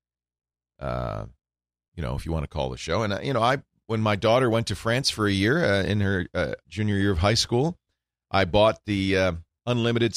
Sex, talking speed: male, 220 wpm